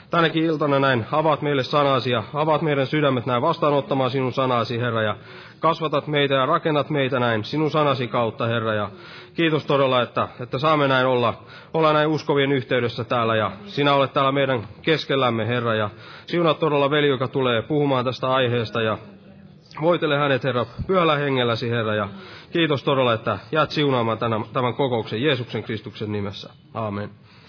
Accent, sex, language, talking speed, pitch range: native, male, Finnish, 165 wpm, 115-145 Hz